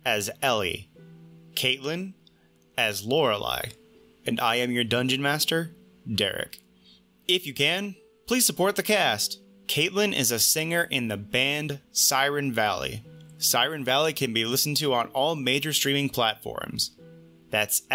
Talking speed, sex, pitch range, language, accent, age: 135 wpm, male, 110-150 Hz, English, American, 30-49